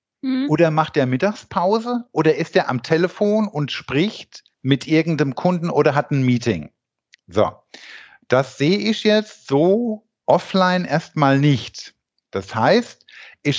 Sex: male